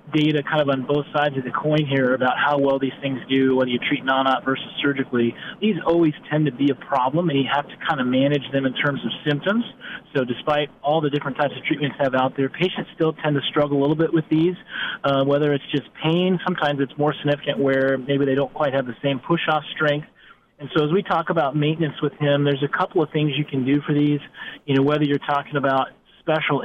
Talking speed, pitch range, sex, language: 240 wpm, 135-150 Hz, male, English